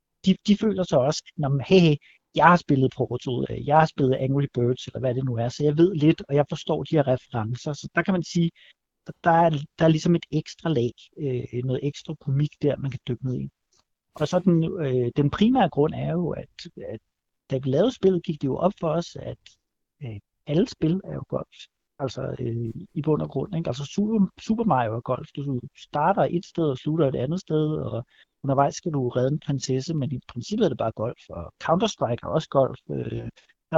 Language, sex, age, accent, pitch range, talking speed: Danish, male, 60-79, native, 130-170 Hz, 220 wpm